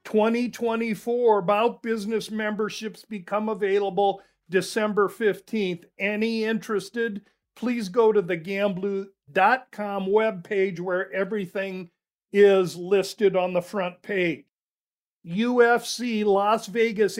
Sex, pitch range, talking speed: male, 195-225 Hz, 95 wpm